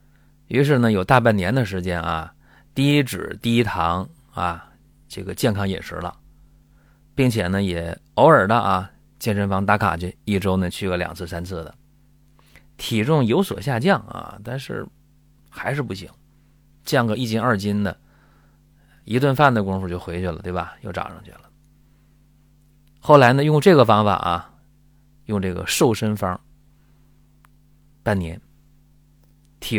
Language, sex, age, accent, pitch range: Chinese, male, 30-49, native, 95-145 Hz